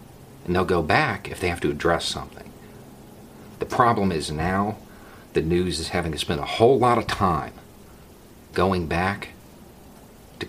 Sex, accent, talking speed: male, American, 160 wpm